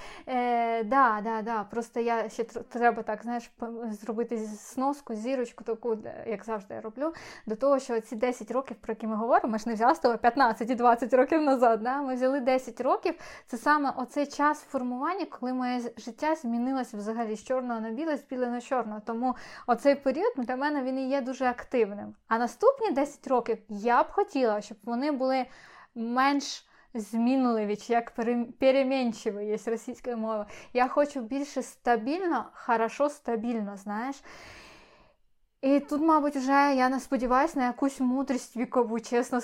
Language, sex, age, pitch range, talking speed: Ukrainian, female, 20-39, 230-265 Hz, 165 wpm